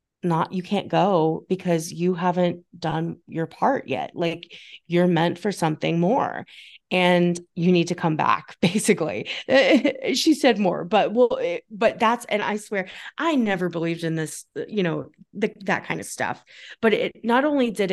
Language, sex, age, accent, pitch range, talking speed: English, female, 30-49, American, 170-205 Hz, 165 wpm